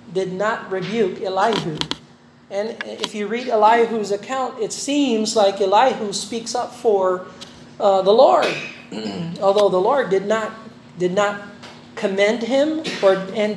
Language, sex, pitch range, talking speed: Filipino, male, 195-245 Hz, 135 wpm